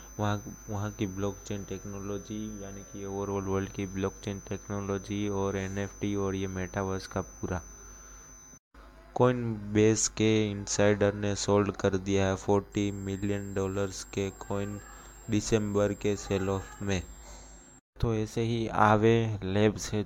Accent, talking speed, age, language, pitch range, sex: native, 135 wpm, 20-39, Hindi, 95-105 Hz, male